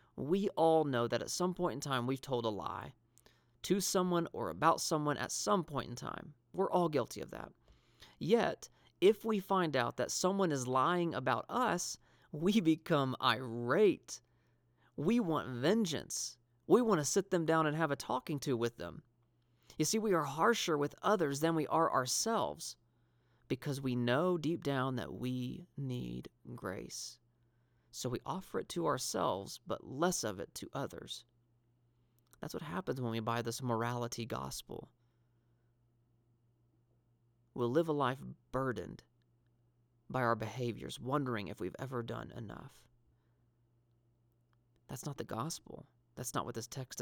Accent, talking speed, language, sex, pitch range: American, 155 wpm, English, male, 120-155 Hz